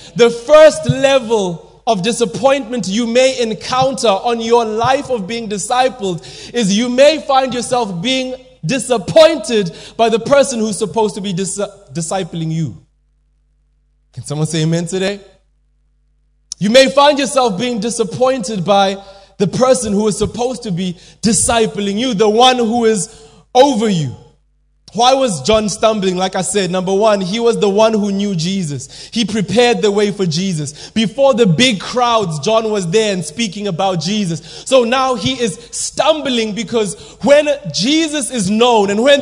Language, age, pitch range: English, 20-39, 185-255 Hz